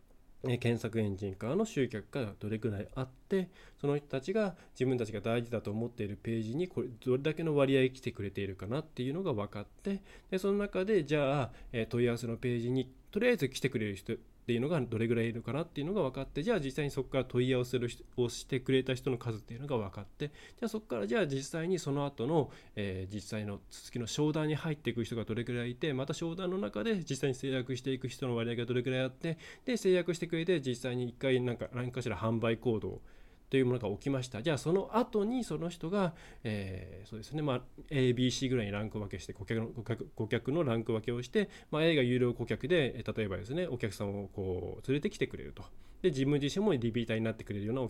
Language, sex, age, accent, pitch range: Japanese, male, 20-39, native, 110-150 Hz